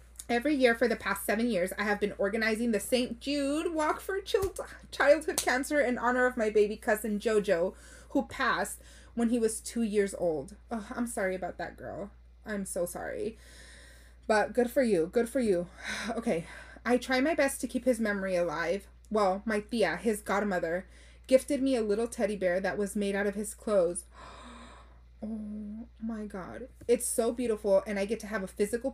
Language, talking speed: English, 190 wpm